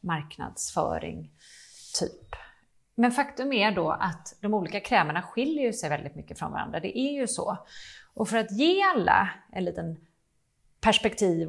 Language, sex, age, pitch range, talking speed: Swedish, female, 30-49, 165-235 Hz, 150 wpm